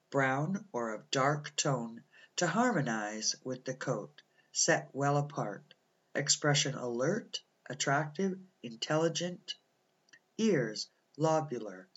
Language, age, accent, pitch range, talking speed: English, 60-79, American, 135-170 Hz, 95 wpm